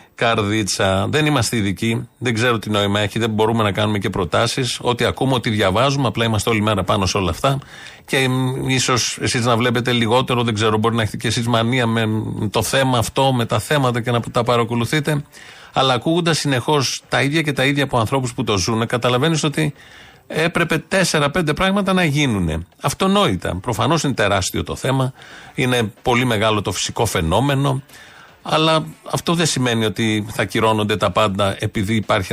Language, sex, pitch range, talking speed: Greek, male, 110-140 Hz, 175 wpm